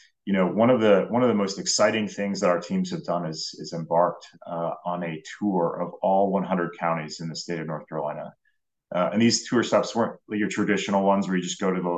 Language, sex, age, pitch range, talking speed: English, male, 30-49, 90-105 Hz, 235 wpm